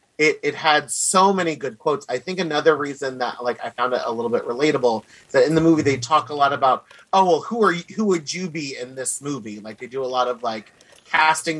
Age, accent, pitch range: 30-49, American, 125-160 Hz